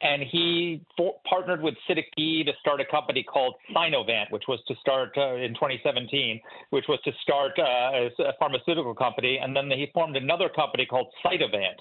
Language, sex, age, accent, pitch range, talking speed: English, male, 40-59, American, 140-200 Hz, 185 wpm